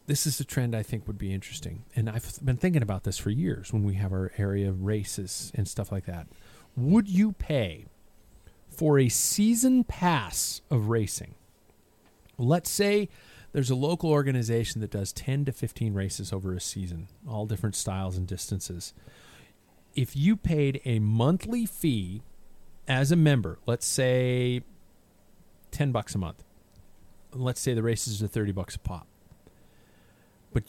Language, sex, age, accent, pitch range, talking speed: English, male, 40-59, American, 100-140 Hz, 160 wpm